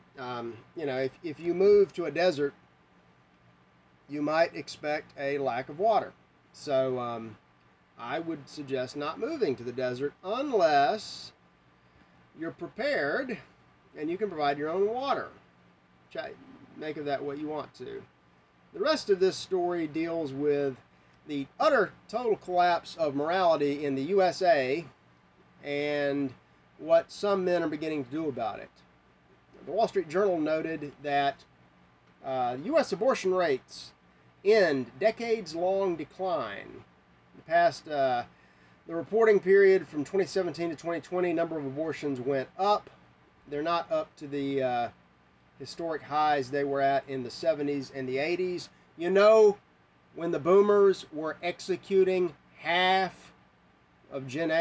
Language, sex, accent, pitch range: English, male, American, 125-180 Hz